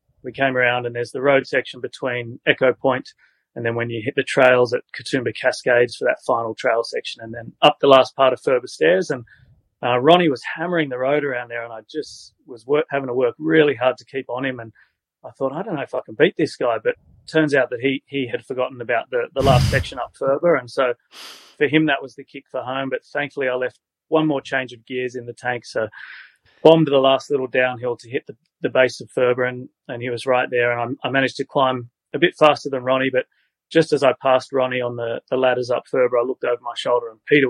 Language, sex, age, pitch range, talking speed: English, male, 30-49, 125-145 Hz, 250 wpm